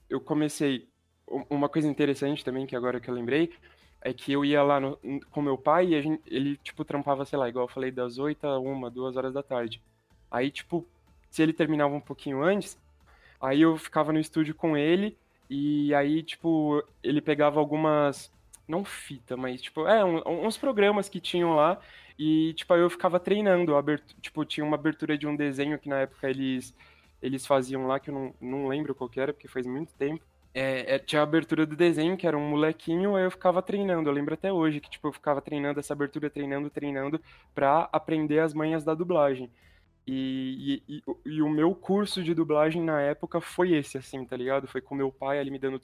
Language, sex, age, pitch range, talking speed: Portuguese, male, 20-39, 135-160 Hz, 205 wpm